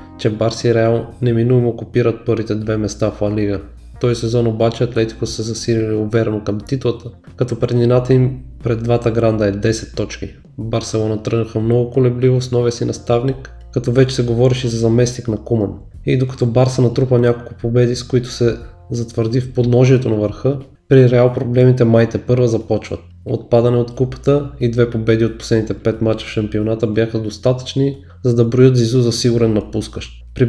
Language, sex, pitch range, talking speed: Bulgarian, male, 110-125 Hz, 170 wpm